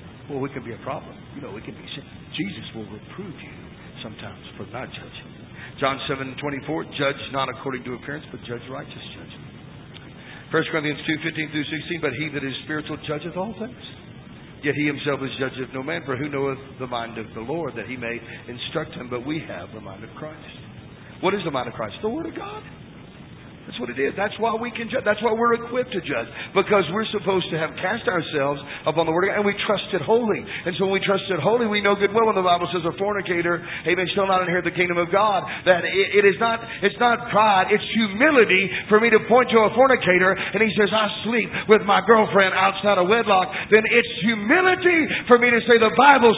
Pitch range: 145-220 Hz